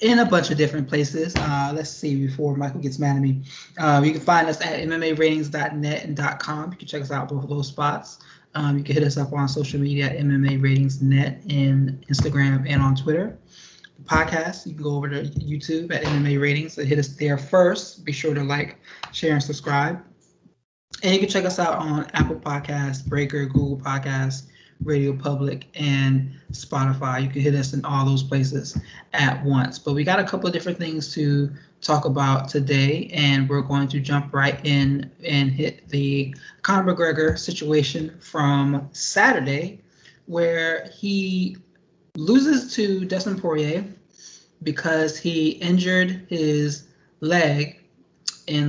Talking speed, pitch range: 170 wpm, 140-160 Hz